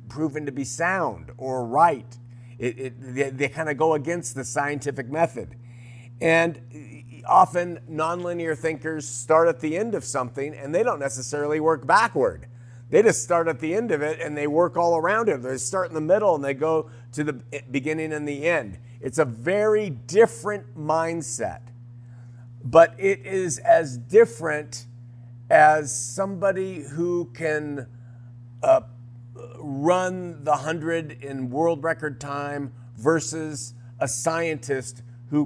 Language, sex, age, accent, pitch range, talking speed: English, male, 50-69, American, 120-165 Hz, 145 wpm